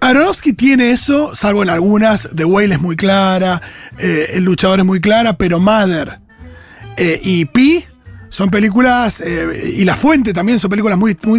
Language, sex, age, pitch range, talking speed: Spanish, male, 30-49, 165-235 Hz, 175 wpm